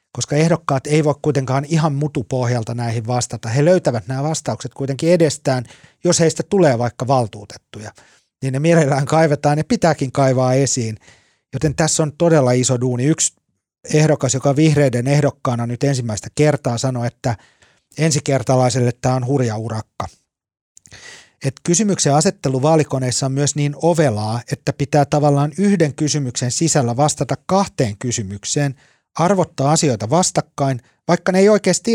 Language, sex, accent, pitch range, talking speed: Finnish, male, native, 125-160 Hz, 140 wpm